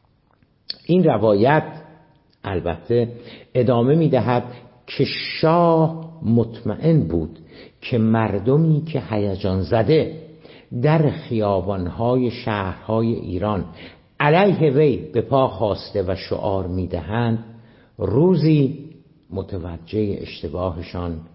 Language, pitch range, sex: Persian, 95-140 Hz, male